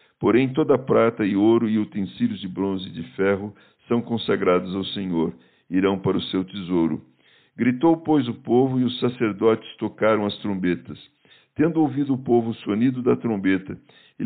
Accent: Brazilian